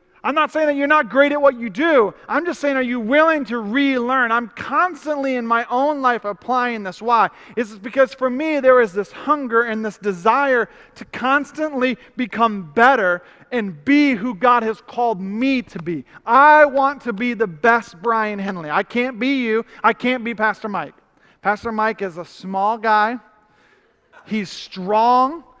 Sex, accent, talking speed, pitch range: male, American, 185 wpm, 205-255 Hz